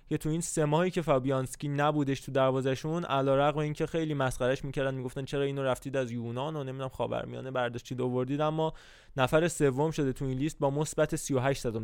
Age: 20-39